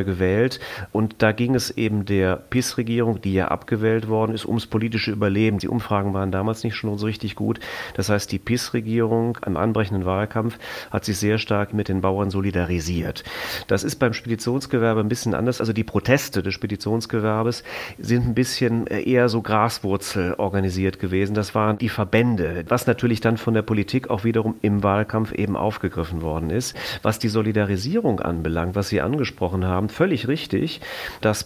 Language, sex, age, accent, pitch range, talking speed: German, male, 40-59, German, 100-120 Hz, 170 wpm